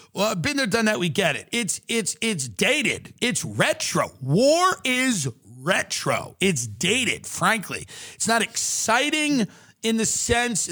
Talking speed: 145 wpm